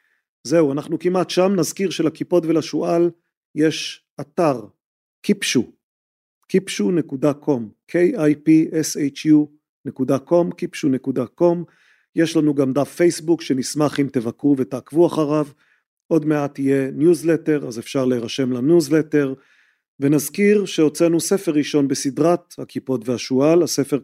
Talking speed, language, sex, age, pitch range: 95 wpm, Hebrew, male, 40-59, 135-165 Hz